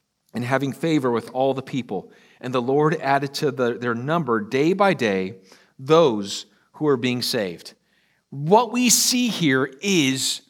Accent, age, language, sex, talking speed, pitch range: American, 40-59, English, male, 160 wpm, 140-205 Hz